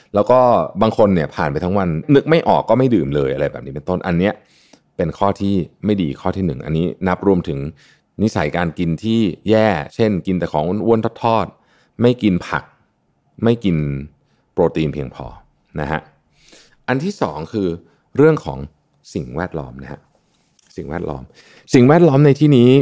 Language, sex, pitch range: Thai, male, 75-110 Hz